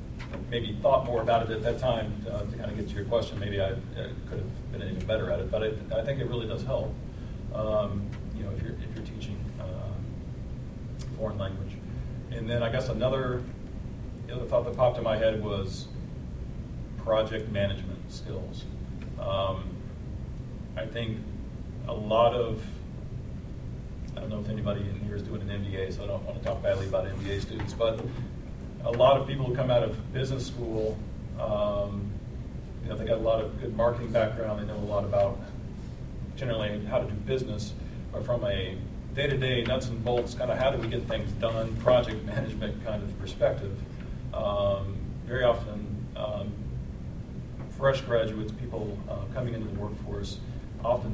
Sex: male